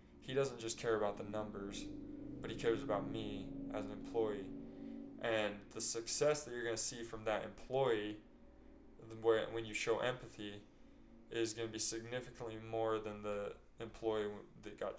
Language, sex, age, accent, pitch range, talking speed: English, male, 20-39, American, 100-115 Hz, 165 wpm